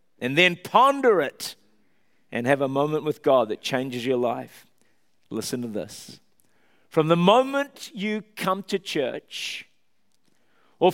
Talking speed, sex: 135 wpm, male